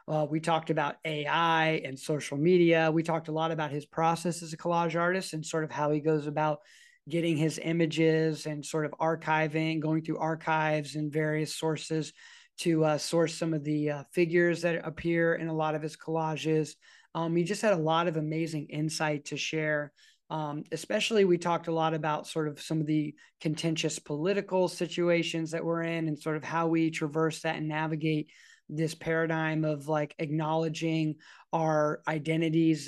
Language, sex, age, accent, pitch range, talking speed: English, male, 20-39, American, 155-165 Hz, 185 wpm